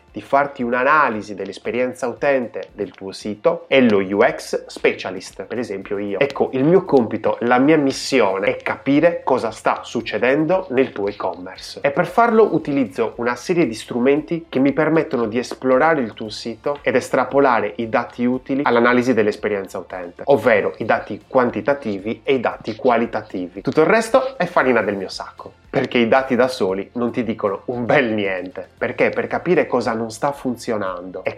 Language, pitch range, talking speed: Italian, 115-165 Hz, 170 wpm